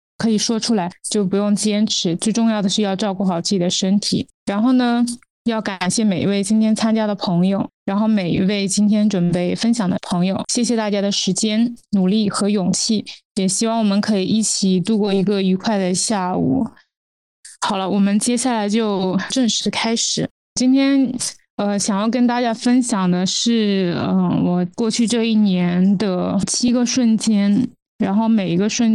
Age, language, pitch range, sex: 20-39, Chinese, 185-220 Hz, female